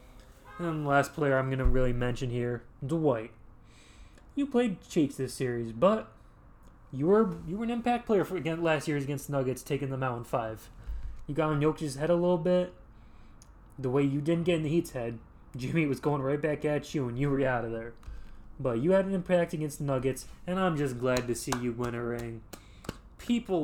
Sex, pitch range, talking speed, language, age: male, 120-150 Hz, 215 wpm, English, 20-39